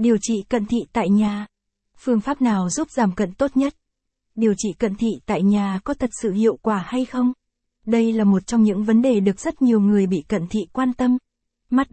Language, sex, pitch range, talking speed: Vietnamese, female, 205-235 Hz, 220 wpm